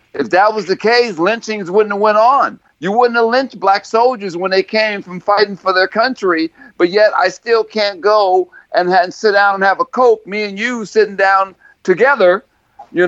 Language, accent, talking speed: English, American, 205 wpm